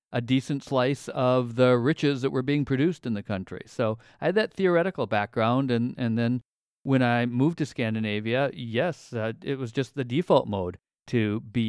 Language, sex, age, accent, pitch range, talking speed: English, male, 50-69, American, 115-140 Hz, 190 wpm